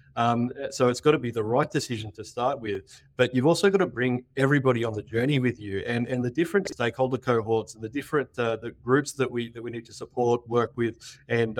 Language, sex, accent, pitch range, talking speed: English, male, Australian, 115-135 Hz, 240 wpm